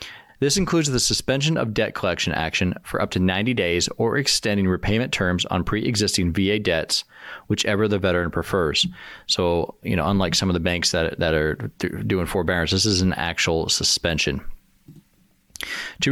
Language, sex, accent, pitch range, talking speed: English, male, American, 90-120 Hz, 165 wpm